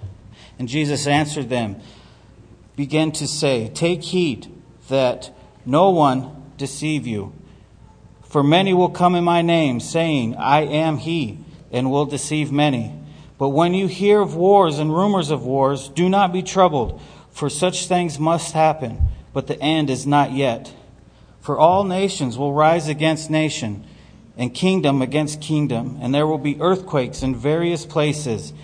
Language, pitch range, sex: English, 130-165 Hz, male